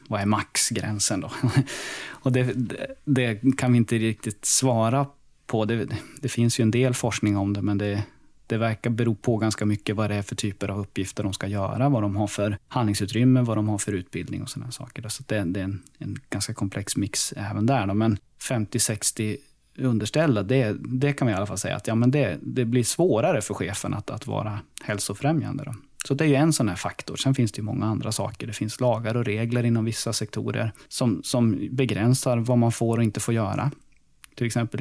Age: 20-39